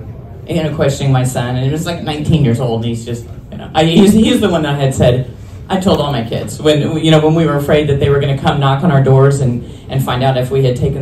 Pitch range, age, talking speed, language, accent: 125-160 Hz, 40-59, 295 wpm, English, American